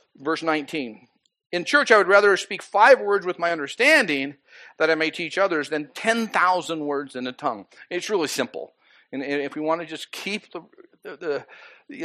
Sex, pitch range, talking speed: male, 130-180 Hz, 195 wpm